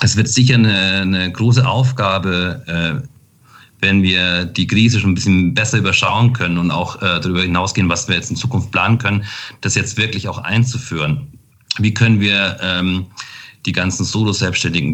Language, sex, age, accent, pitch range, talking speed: German, male, 40-59, German, 95-115 Hz, 170 wpm